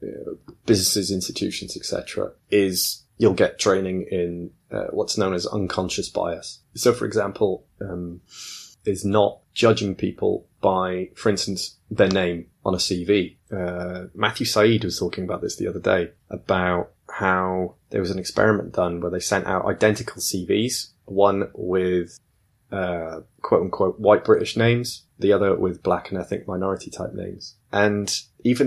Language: English